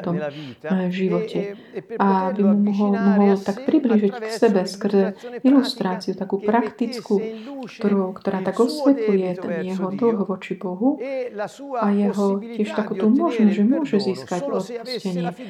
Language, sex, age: Slovak, female, 30-49